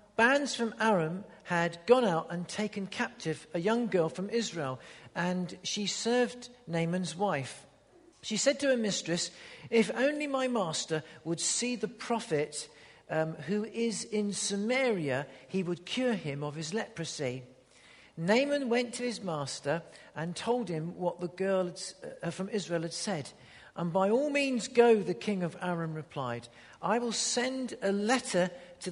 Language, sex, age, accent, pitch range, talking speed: English, male, 50-69, British, 160-225 Hz, 160 wpm